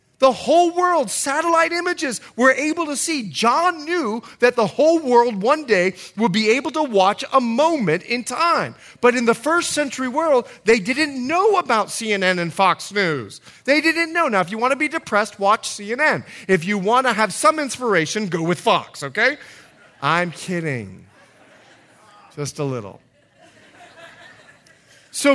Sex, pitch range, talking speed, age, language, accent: male, 195-300 Hz, 165 wpm, 40-59, English, American